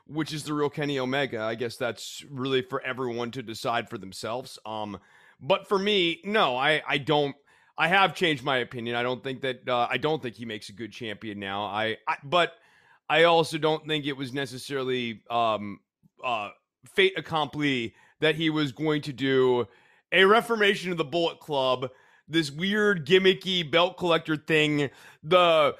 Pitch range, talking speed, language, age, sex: 130-170 Hz, 175 wpm, English, 30-49, male